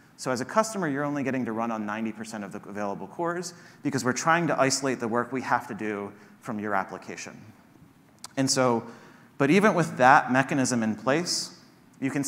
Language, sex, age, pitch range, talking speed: English, male, 30-49, 110-140 Hz, 195 wpm